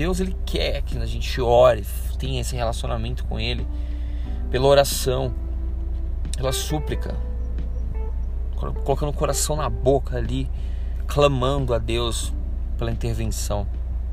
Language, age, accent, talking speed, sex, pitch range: Portuguese, 20-39, Brazilian, 115 wpm, male, 65-100 Hz